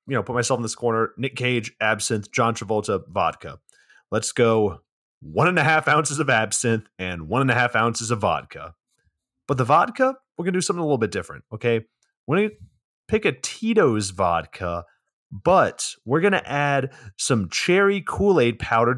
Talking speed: 185 wpm